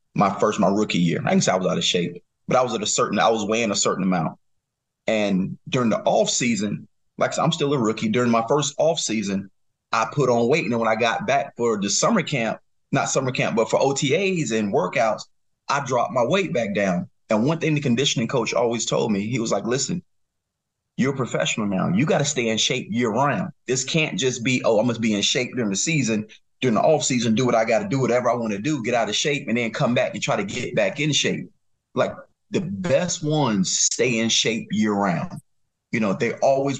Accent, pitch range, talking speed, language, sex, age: American, 110-150 Hz, 240 wpm, English, male, 30-49